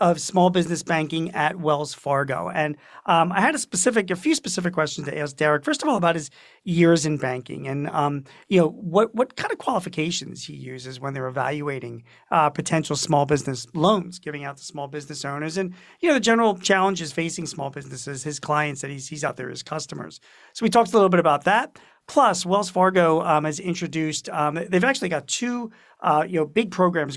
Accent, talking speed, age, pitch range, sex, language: American, 210 wpm, 40-59, 150-180 Hz, male, English